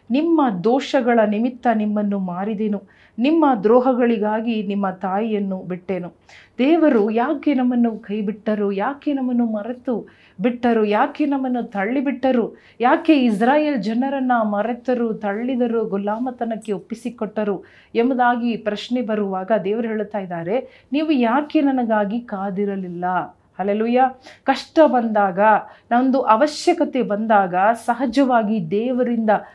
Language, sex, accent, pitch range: Kannada, female, native, 210-255 Hz